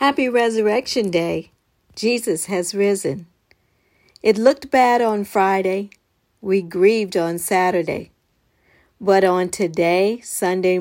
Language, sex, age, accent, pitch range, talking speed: English, female, 40-59, American, 185-230 Hz, 105 wpm